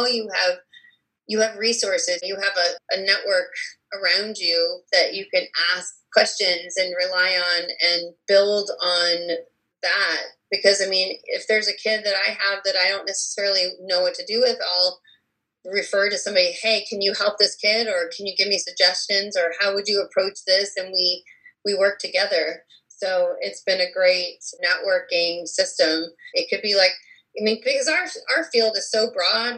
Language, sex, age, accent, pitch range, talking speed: English, female, 30-49, American, 185-255 Hz, 185 wpm